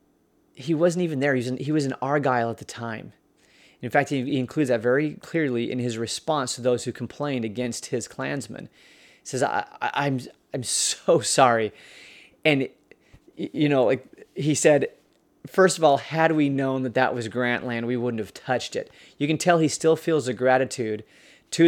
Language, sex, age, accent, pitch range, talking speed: English, male, 30-49, American, 125-155 Hz, 190 wpm